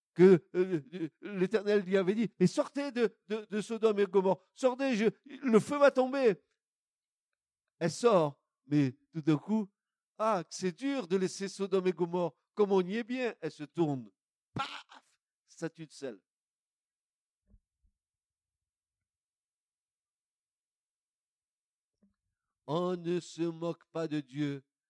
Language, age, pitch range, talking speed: French, 50-69, 150-235 Hz, 125 wpm